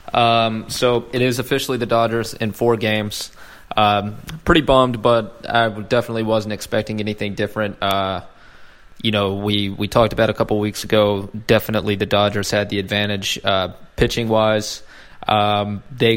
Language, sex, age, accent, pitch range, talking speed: English, male, 20-39, American, 105-115 Hz, 155 wpm